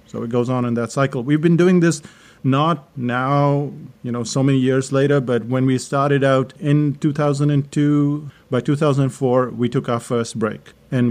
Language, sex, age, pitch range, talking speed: English, male, 40-59, 125-155 Hz, 185 wpm